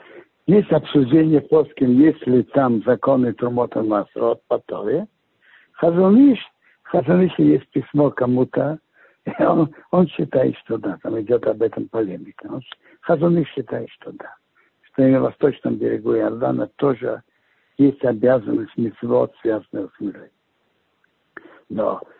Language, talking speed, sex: Russian, 115 wpm, male